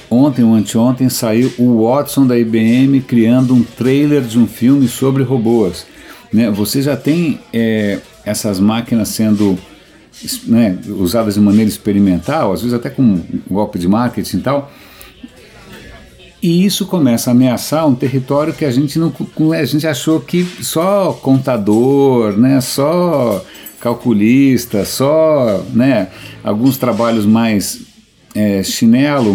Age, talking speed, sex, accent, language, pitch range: 50-69, 135 wpm, male, Brazilian, Portuguese, 105-135 Hz